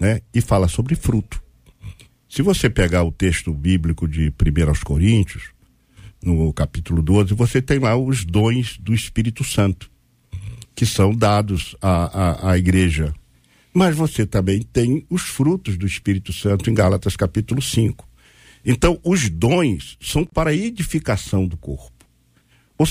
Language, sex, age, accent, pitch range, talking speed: Portuguese, male, 60-79, Brazilian, 95-140 Hz, 145 wpm